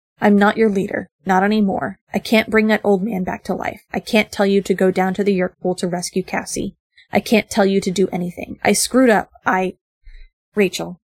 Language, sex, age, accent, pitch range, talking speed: English, female, 20-39, American, 190-215 Hz, 220 wpm